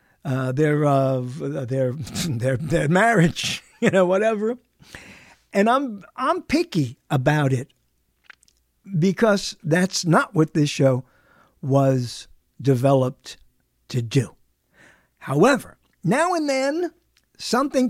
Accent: American